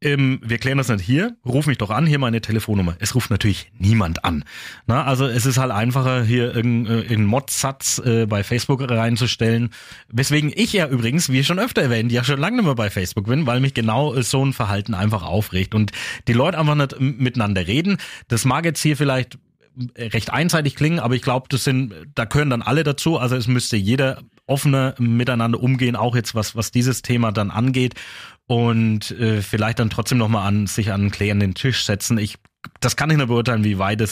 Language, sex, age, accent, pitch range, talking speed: German, male, 30-49, German, 105-135 Hz, 215 wpm